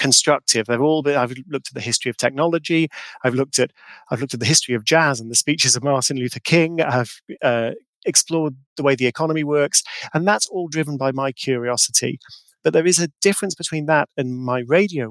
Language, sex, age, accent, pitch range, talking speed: English, male, 40-59, British, 125-160 Hz, 210 wpm